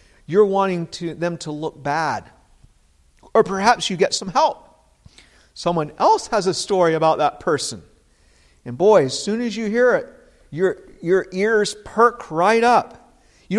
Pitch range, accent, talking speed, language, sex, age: 130-190 Hz, American, 155 wpm, English, male, 50-69